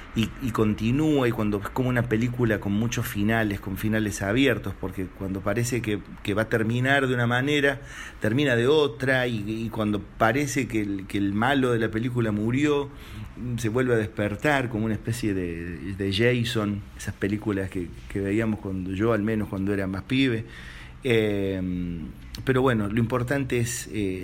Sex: male